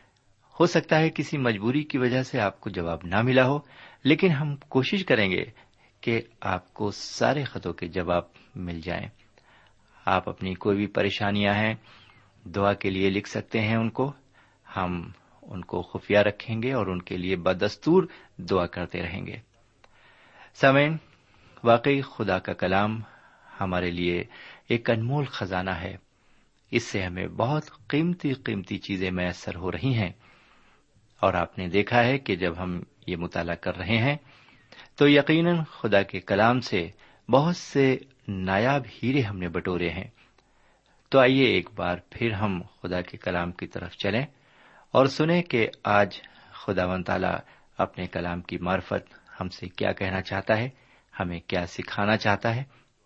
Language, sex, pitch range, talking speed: Urdu, male, 95-130 Hz, 155 wpm